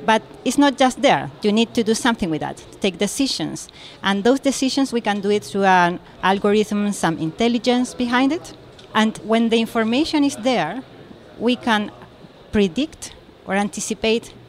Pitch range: 195-250 Hz